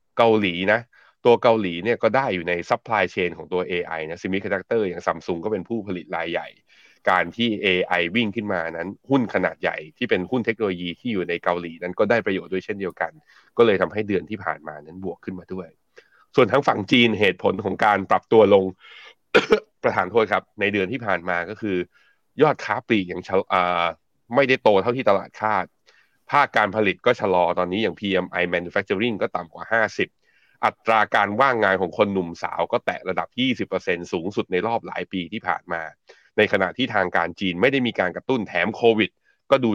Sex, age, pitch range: male, 20-39, 90-110 Hz